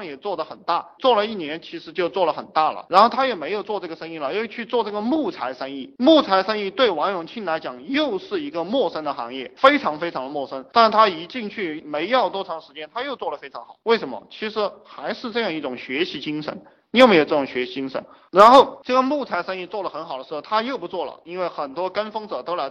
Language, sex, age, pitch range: Chinese, male, 20-39, 165-255 Hz